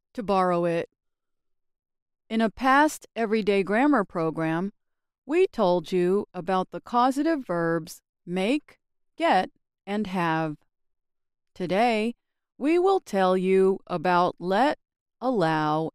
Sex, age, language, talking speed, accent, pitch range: female, 40-59, English, 105 wpm, American, 175-260 Hz